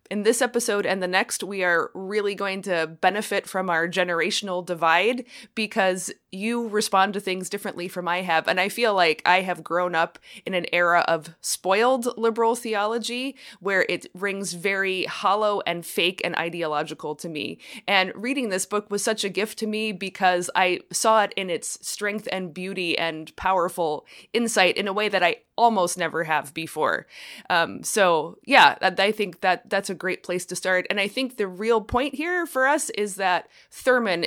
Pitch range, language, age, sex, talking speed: 175-210 Hz, English, 20-39, female, 190 wpm